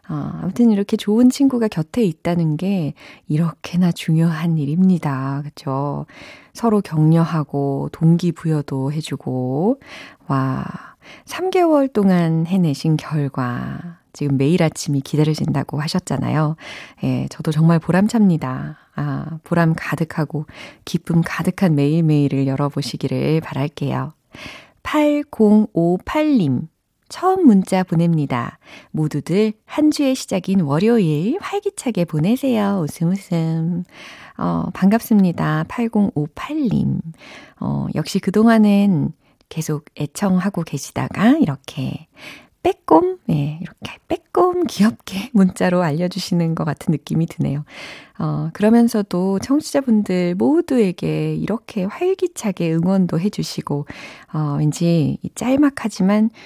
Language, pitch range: Korean, 155-215 Hz